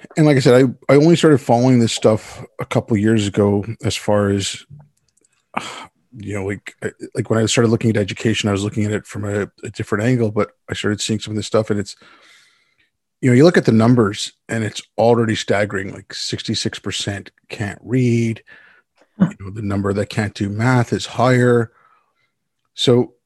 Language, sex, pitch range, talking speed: English, male, 105-130 Hz, 190 wpm